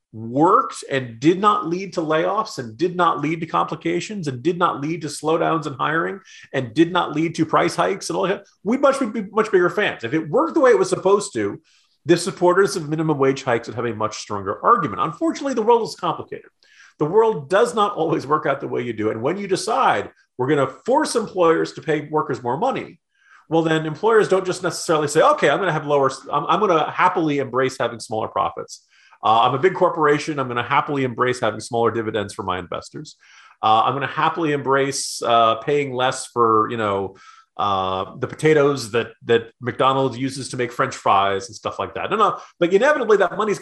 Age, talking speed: 40-59, 220 wpm